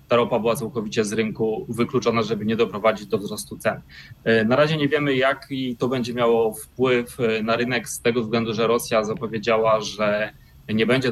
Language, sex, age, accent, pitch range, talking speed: Polish, male, 20-39, native, 110-125 Hz, 180 wpm